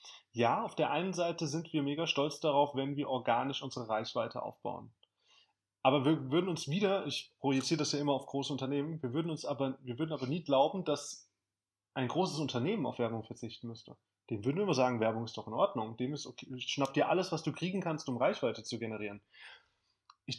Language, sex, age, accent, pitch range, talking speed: German, male, 20-39, German, 120-155 Hz, 210 wpm